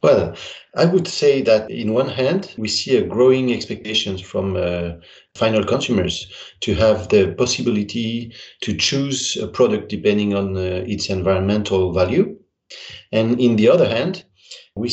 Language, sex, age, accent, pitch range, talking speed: English, male, 40-59, French, 95-125 Hz, 150 wpm